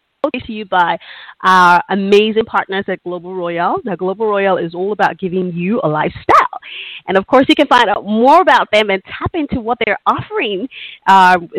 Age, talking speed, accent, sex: 30-49, 185 wpm, American, female